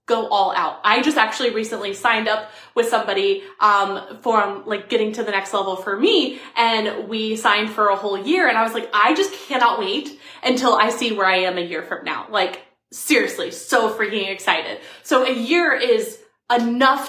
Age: 20-39